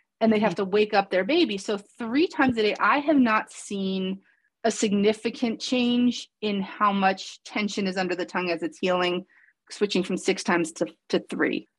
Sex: female